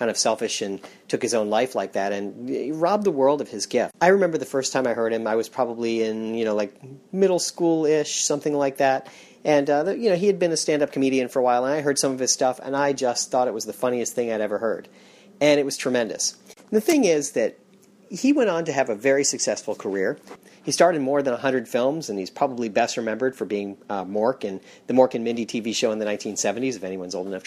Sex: male